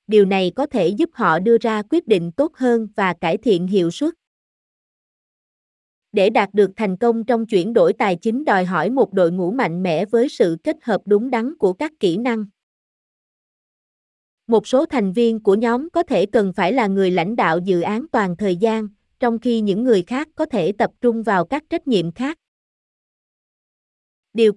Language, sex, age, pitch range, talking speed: Vietnamese, female, 20-39, 195-250 Hz, 190 wpm